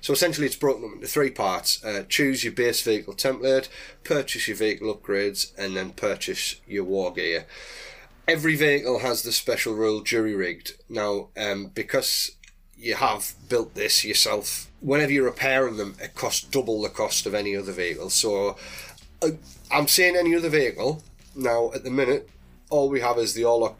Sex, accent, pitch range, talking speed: male, British, 100-130 Hz, 175 wpm